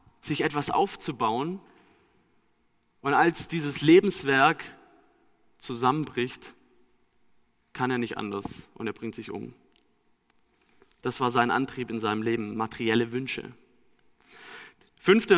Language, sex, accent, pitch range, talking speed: German, male, German, 135-175 Hz, 105 wpm